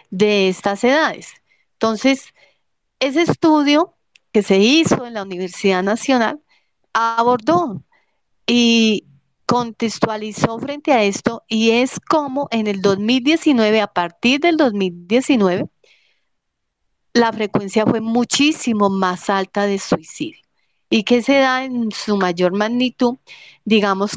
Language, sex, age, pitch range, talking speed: Spanish, female, 40-59, 200-255 Hz, 115 wpm